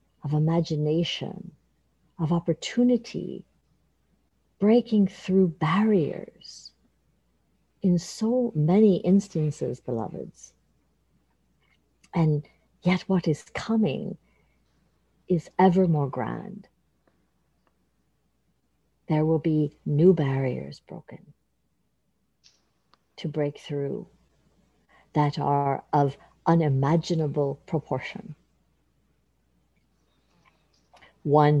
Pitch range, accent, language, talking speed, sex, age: 135-170 Hz, American, English, 70 wpm, female, 50-69